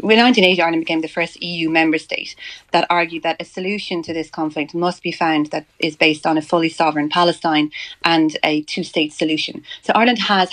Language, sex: English, female